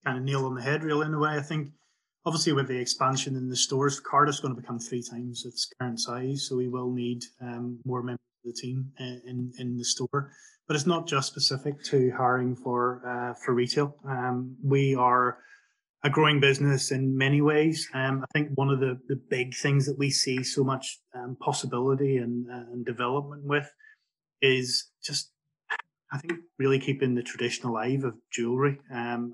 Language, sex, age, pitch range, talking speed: English, male, 20-39, 125-140 Hz, 195 wpm